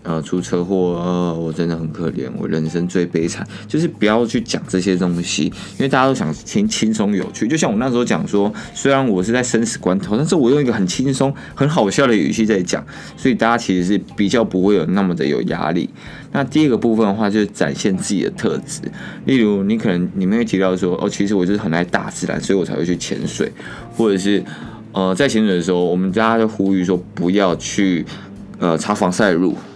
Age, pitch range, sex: 20-39, 90-110 Hz, male